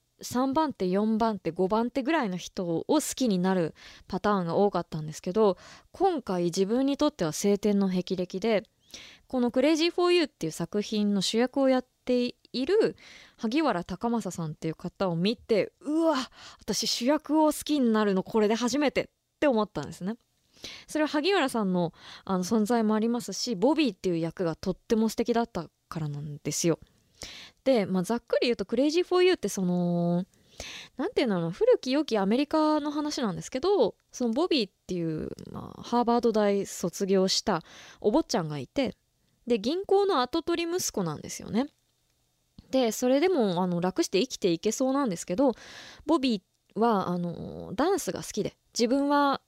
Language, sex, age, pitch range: Japanese, female, 20-39, 185-275 Hz